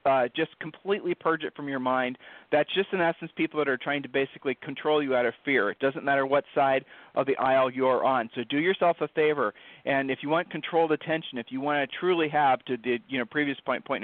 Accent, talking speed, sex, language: American, 255 wpm, male, English